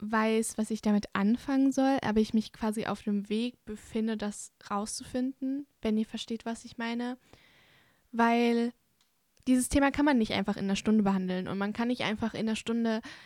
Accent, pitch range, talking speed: German, 210-235 Hz, 185 wpm